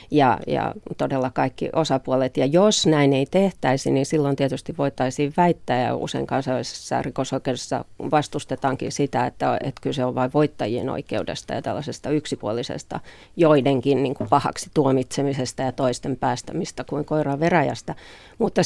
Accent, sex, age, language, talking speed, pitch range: native, female, 40-59, Finnish, 130 wpm, 130-150 Hz